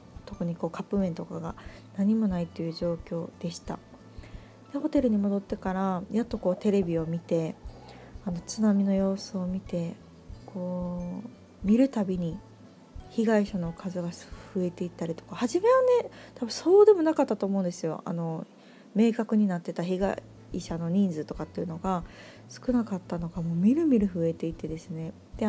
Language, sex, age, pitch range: Japanese, female, 20-39, 170-215 Hz